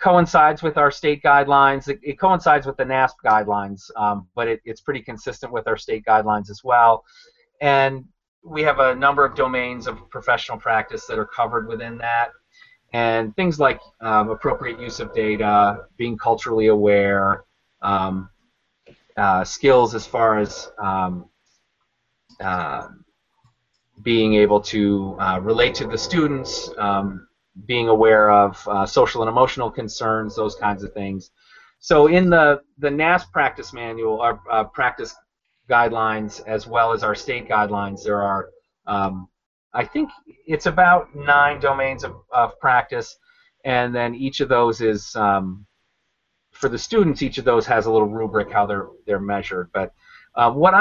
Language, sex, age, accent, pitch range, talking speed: English, male, 30-49, American, 105-145 Hz, 155 wpm